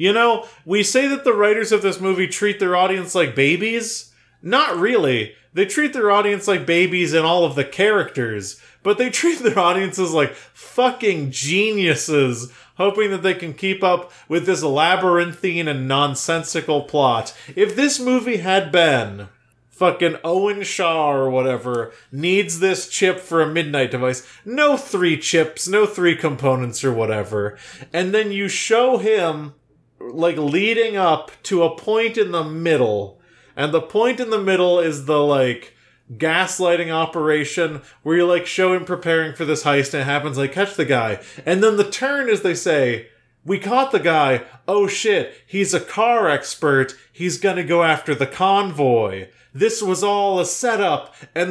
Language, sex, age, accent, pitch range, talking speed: English, male, 30-49, American, 145-200 Hz, 165 wpm